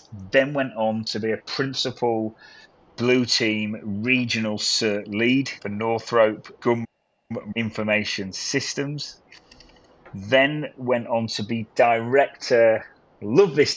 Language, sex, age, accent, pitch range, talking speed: English, male, 30-49, British, 110-130 Hz, 110 wpm